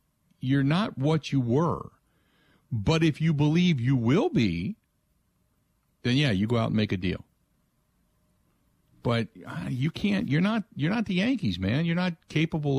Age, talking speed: 50-69, 160 wpm